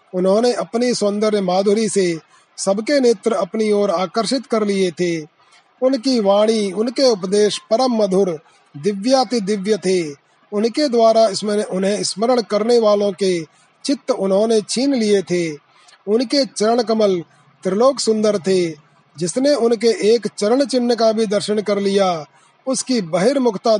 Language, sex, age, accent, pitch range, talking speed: Hindi, male, 30-49, native, 190-230 Hz, 135 wpm